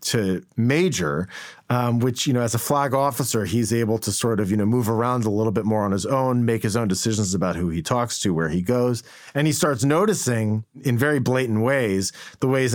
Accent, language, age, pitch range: American, English, 40-59, 110-140 Hz